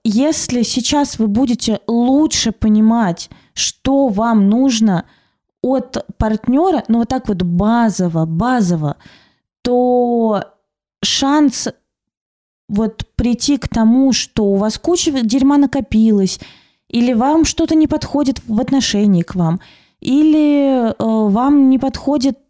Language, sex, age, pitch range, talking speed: Russian, female, 20-39, 205-265 Hz, 110 wpm